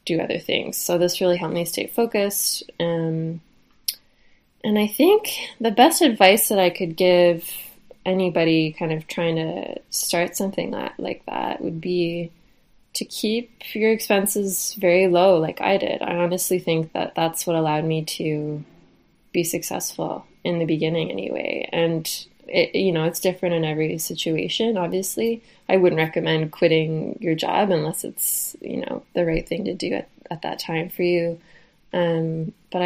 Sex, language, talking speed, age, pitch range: female, English, 160 wpm, 20-39, 165-190 Hz